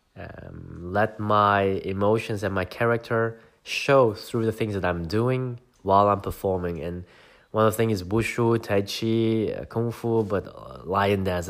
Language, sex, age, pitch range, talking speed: English, male, 20-39, 95-115 Hz, 165 wpm